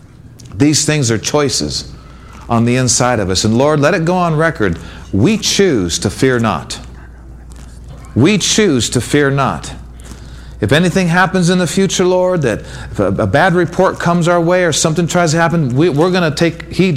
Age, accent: 50-69, American